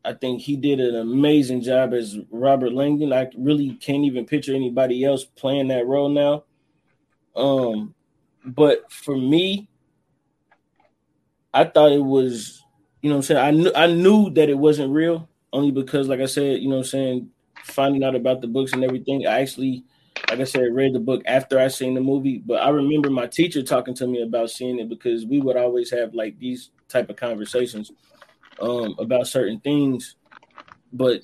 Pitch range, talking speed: 120-140 Hz, 190 wpm